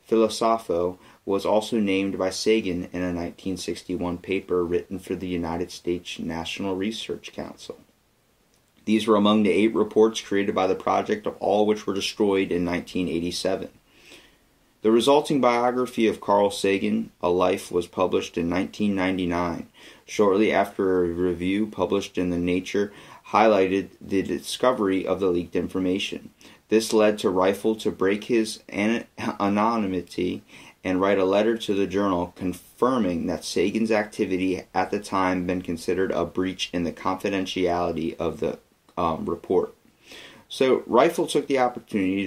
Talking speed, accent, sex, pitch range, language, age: 145 wpm, American, male, 90-105 Hz, English, 30-49